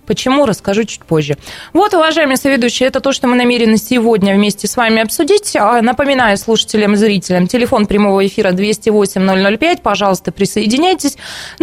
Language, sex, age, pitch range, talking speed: Russian, female, 20-39, 205-270 Hz, 140 wpm